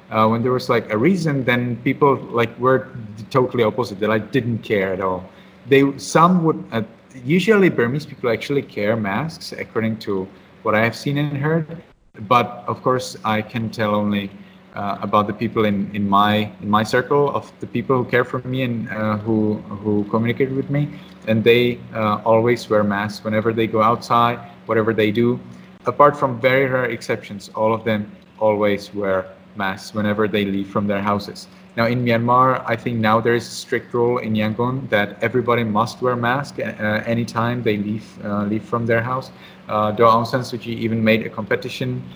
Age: 30-49